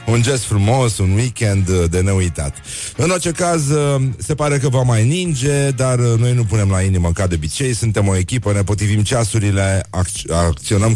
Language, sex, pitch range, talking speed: Romanian, male, 95-125 Hz, 180 wpm